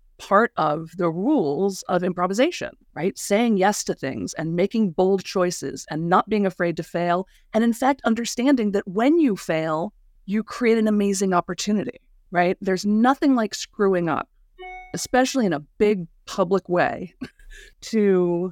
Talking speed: 150 wpm